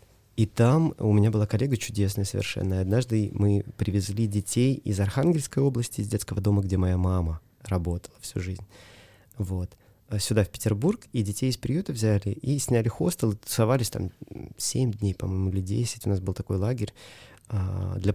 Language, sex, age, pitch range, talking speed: Russian, male, 20-39, 100-130 Hz, 160 wpm